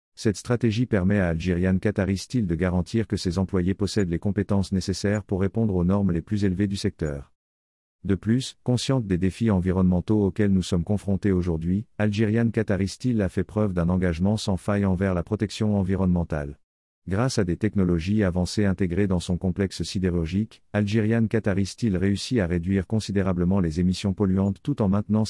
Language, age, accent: French, 50-69, French